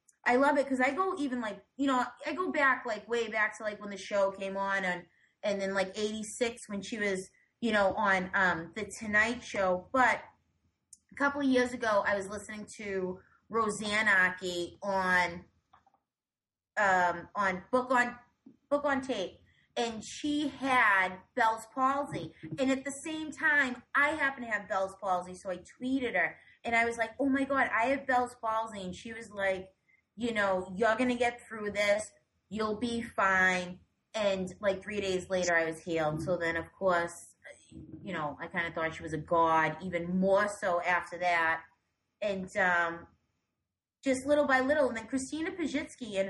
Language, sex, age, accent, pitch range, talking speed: English, female, 30-49, American, 185-245 Hz, 185 wpm